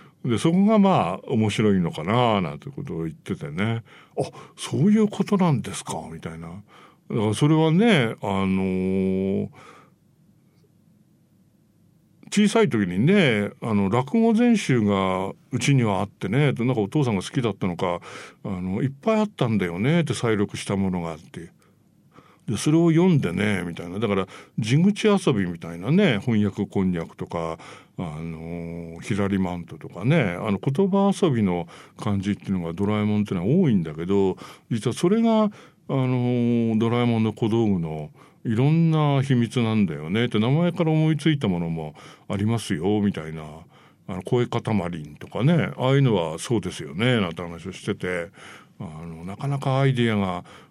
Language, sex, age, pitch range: English, male, 60-79, 95-150 Hz